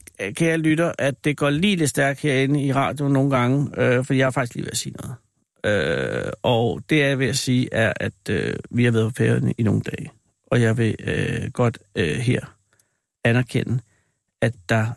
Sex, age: male, 60-79